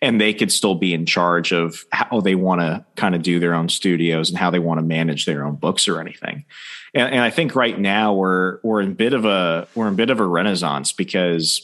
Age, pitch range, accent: 30-49, 85-100 Hz, American